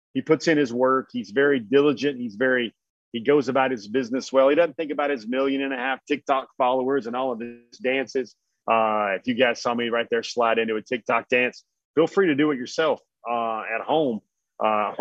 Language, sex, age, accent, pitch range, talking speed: English, male, 40-59, American, 115-150 Hz, 210 wpm